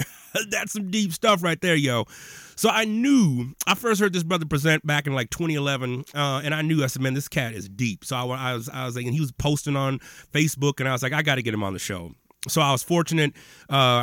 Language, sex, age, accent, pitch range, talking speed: English, male, 30-49, American, 125-175 Hz, 260 wpm